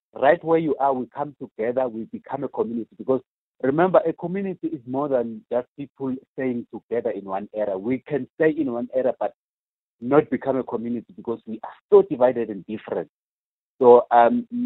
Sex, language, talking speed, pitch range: male, English, 185 wpm, 120-160 Hz